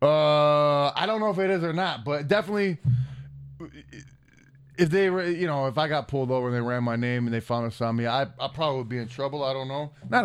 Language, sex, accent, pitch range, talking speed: English, male, American, 125-150 Hz, 250 wpm